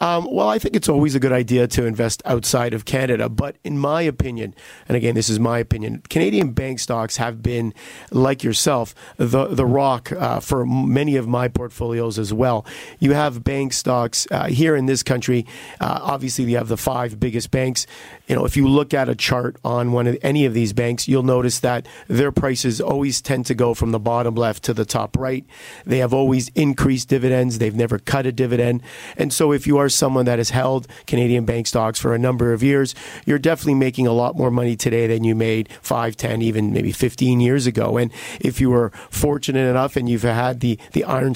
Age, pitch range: 40-59, 120-135 Hz